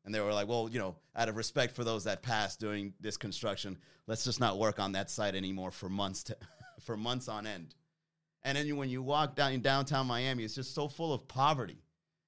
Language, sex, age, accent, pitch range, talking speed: English, male, 30-49, American, 125-160 Hz, 230 wpm